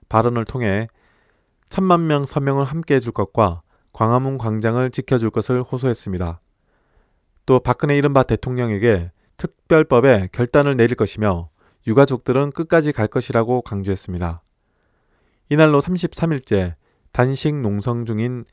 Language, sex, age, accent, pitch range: Korean, male, 20-39, native, 105-140 Hz